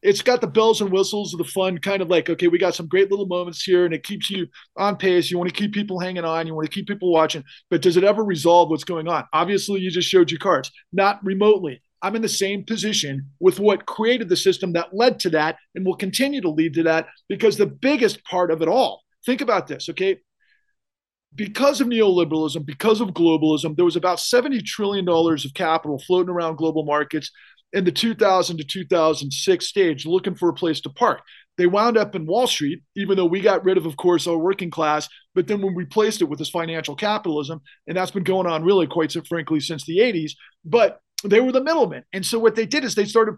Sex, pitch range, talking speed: male, 165-205 Hz, 230 wpm